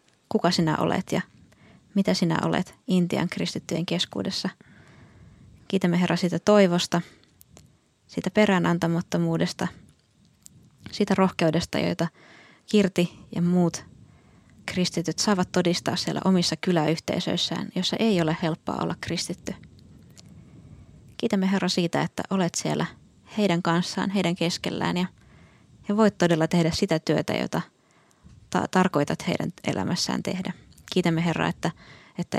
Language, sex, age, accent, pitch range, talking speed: Finnish, female, 20-39, native, 165-185 Hz, 110 wpm